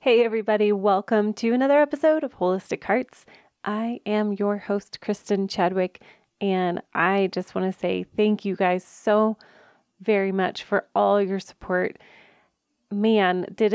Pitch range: 185-215 Hz